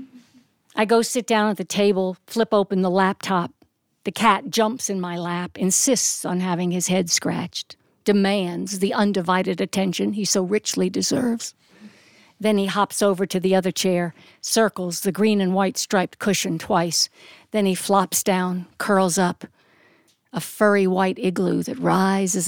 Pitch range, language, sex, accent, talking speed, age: 185-225 Hz, English, female, American, 155 wpm, 60-79